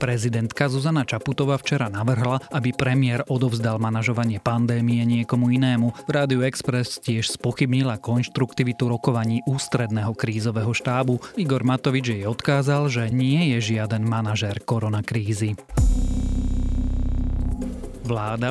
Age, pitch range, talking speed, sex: 30-49, 110-130 Hz, 105 wpm, male